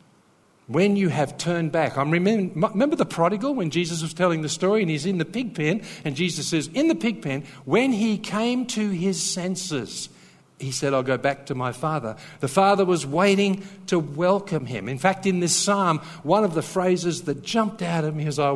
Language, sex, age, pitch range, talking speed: English, male, 50-69, 125-175 Hz, 215 wpm